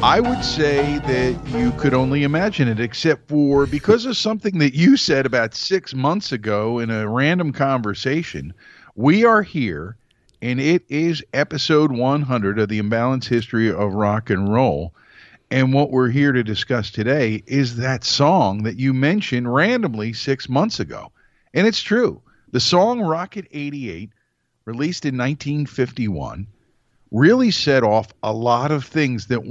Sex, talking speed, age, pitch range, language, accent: male, 155 wpm, 50-69, 110-150 Hz, English, American